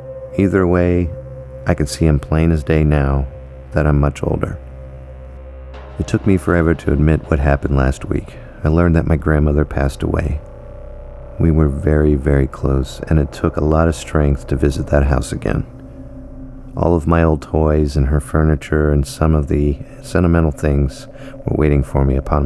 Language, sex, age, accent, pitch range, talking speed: English, male, 40-59, American, 75-95 Hz, 180 wpm